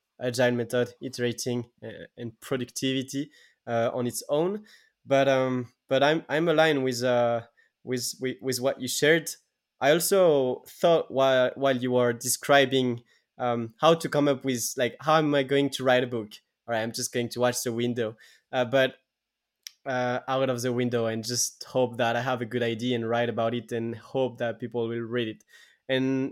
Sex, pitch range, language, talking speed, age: male, 120-145 Hz, English, 190 wpm, 20-39